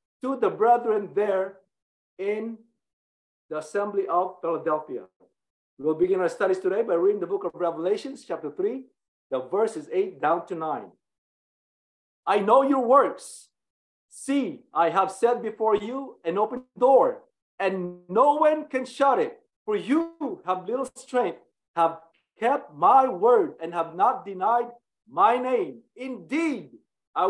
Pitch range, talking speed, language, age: 185-265 Hz, 145 wpm, English, 50-69